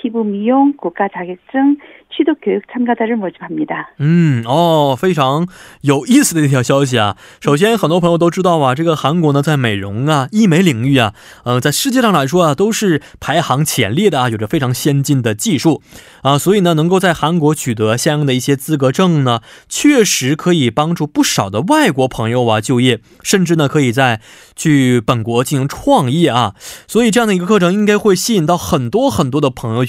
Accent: Chinese